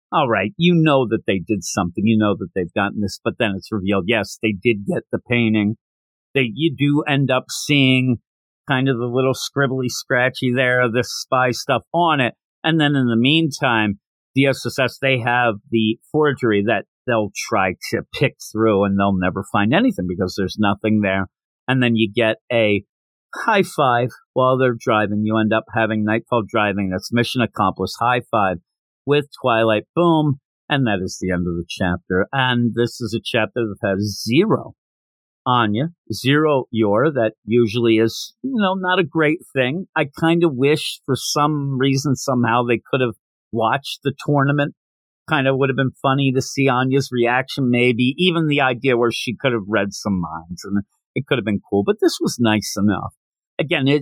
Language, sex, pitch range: English, male, 105-140 Hz